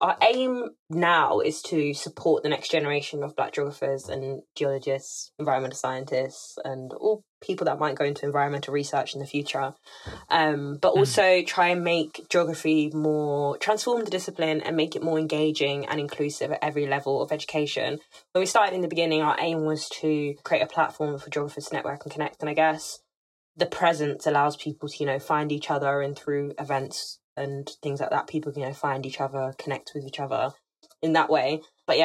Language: English